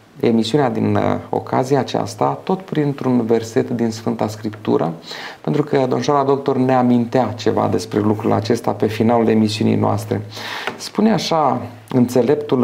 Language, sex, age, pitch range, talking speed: Romanian, male, 30-49, 110-145 Hz, 130 wpm